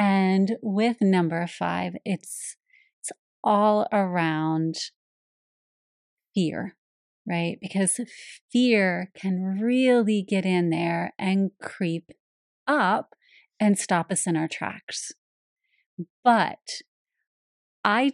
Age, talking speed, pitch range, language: 30-49, 95 wpm, 185-225 Hz, English